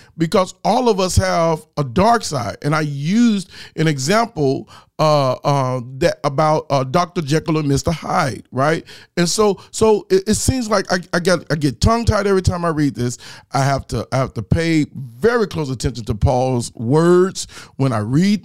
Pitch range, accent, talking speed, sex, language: 125-170 Hz, American, 190 wpm, male, English